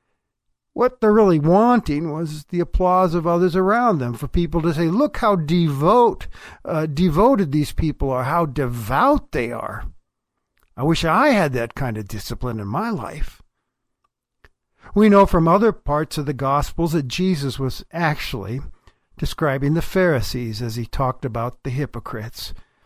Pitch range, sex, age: 135-175 Hz, male, 60-79